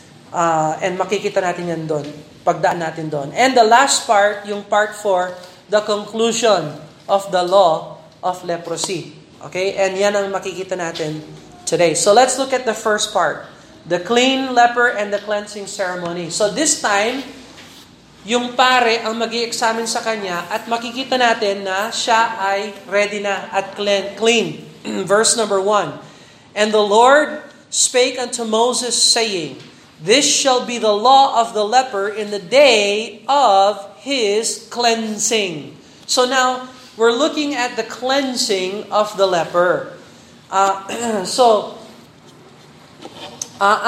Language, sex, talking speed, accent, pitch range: Filipino, male, 140 wpm, native, 195-240 Hz